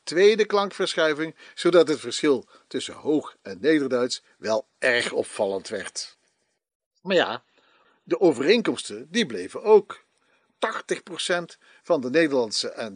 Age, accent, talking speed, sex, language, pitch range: 50-69, Dutch, 115 wpm, male, Dutch, 135-200 Hz